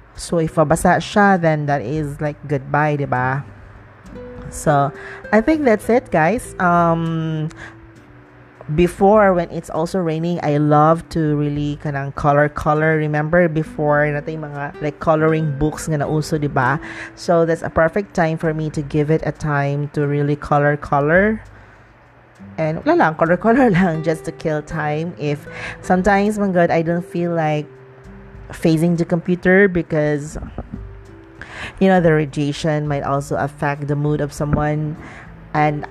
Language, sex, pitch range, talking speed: English, female, 145-165 Hz, 150 wpm